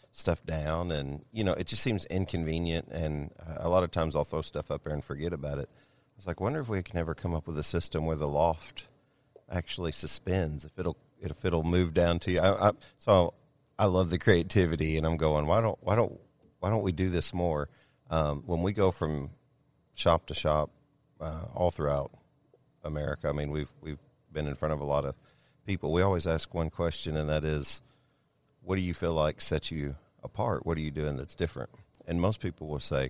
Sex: male